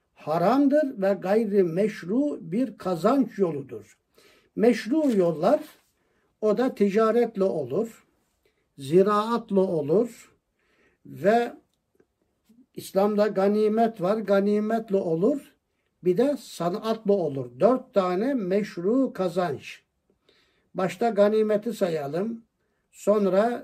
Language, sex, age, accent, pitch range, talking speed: Turkish, male, 60-79, native, 190-240 Hz, 85 wpm